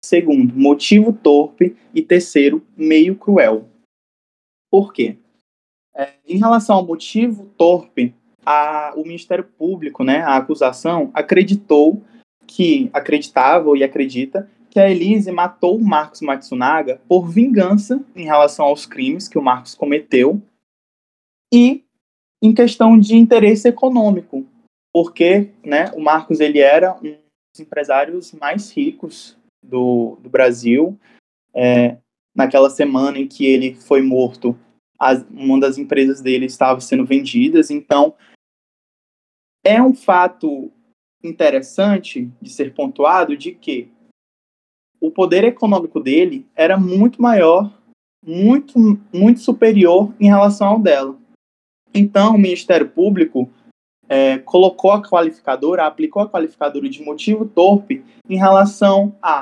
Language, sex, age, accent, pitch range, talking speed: Portuguese, male, 20-39, Brazilian, 145-220 Hz, 120 wpm